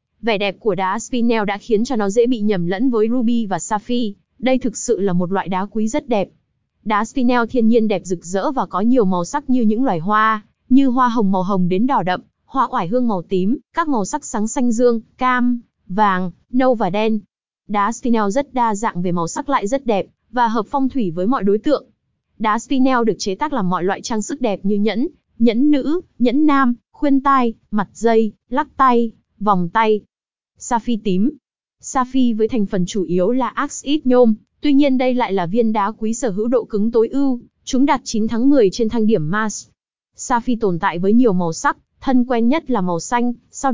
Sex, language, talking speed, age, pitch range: female, Vietnamese, 220 wpm, 20-39, 205-255 Hz